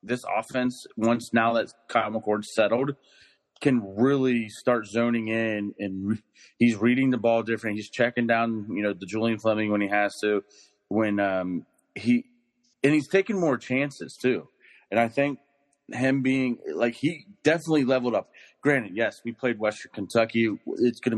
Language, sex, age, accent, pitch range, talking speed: English, male, 30-49, American, 105-130 Hz, 165 wpm